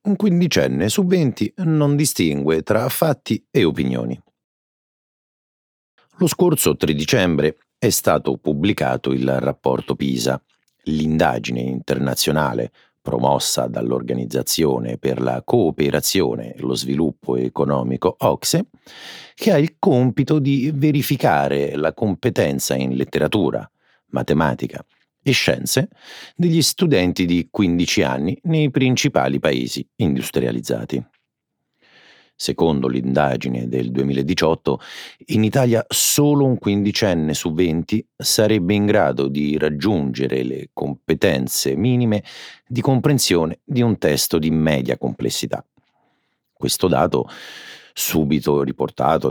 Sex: male